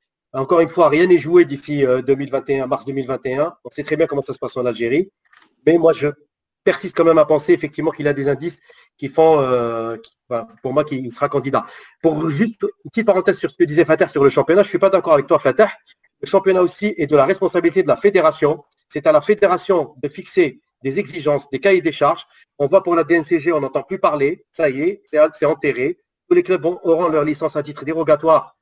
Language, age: French, 40-59